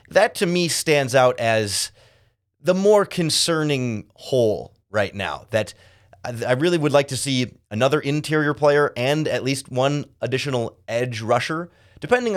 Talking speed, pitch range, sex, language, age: 145 wpm, 105-145 Hz, male, English, 30-49